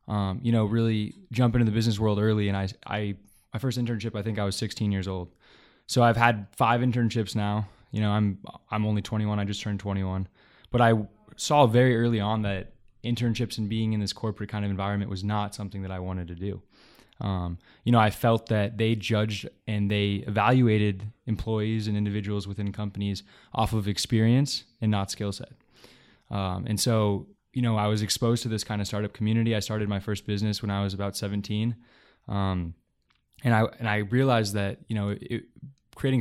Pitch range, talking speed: 100-115 Hz, 200 wpm